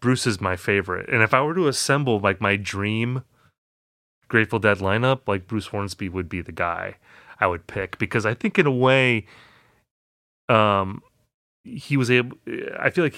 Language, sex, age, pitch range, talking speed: English, male, 30-49, 95-125 Hz, 180 wpm